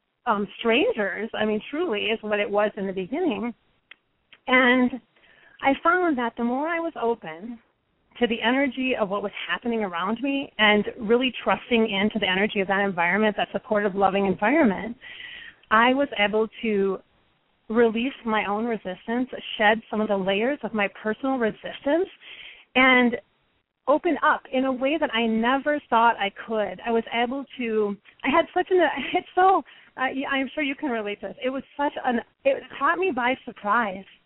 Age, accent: 30-49, American